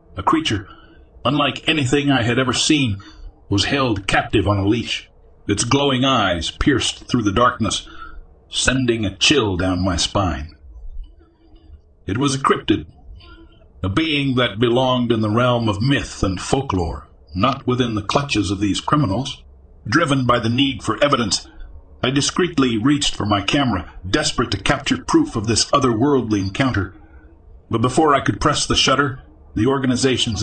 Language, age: English, 50-69